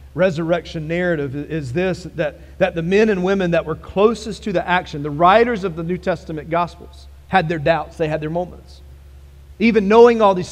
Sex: male